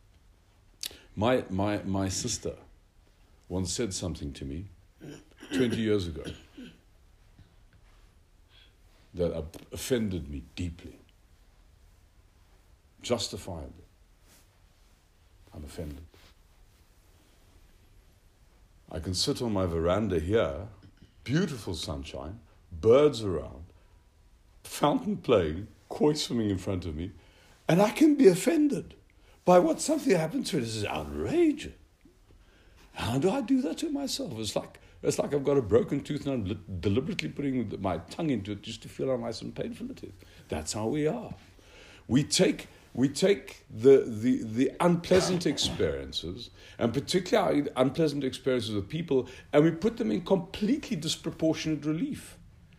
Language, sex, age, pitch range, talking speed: English, male, 60-79, 90-145 Hz, 130 wpm